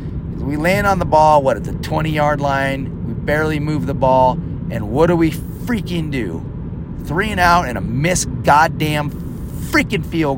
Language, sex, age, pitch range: English, male, 30-49, 140-175 Hz